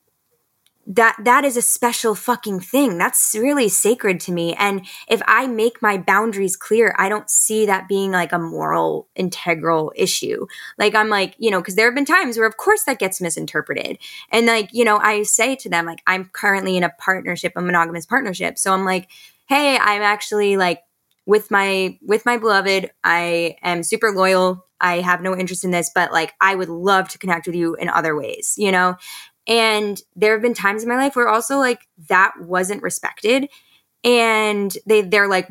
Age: 10-29